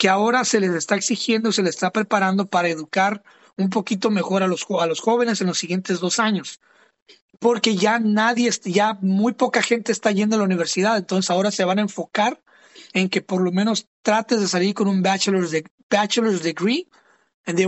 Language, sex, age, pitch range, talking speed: English, male, 30-49, 185-235 Hz, 185 wpm